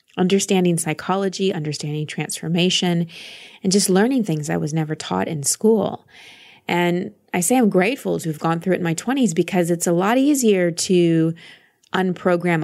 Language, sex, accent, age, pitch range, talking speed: English, female, American, 20-39, 160-195 Hz, 160 wpm